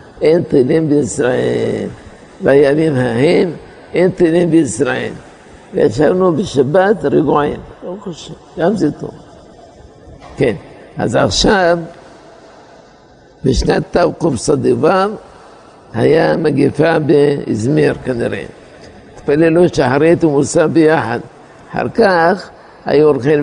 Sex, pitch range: male, 135-160 Hz